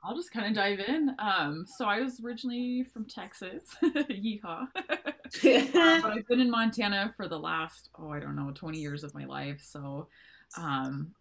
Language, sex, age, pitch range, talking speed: English, female, 20-39, 145-205 Hz, 180 wpm